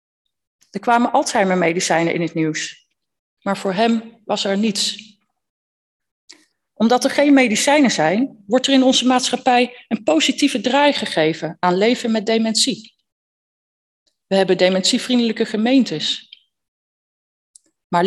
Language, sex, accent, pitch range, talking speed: Dutch, female, Dutch, 180-235 Hz, 115 wpm